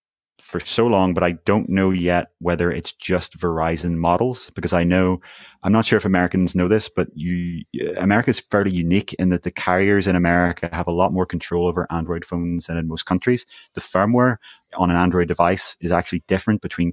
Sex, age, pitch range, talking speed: male, 20-39, 85-100 Hz, 195 wpm